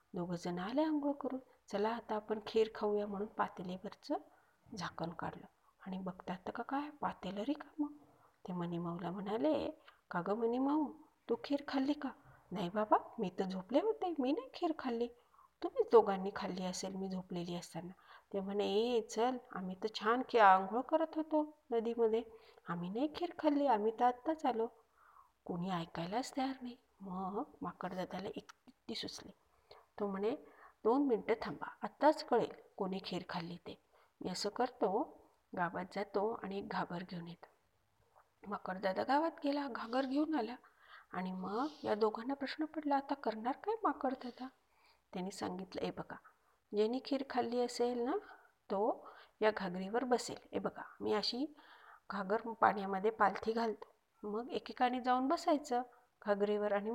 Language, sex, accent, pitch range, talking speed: Marathi, female, native, 195-270 Hz, 145 wpm